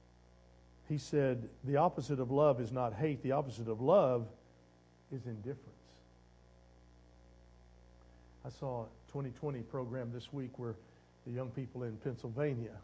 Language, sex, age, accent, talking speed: English, male, 50-69, American, 130 wpm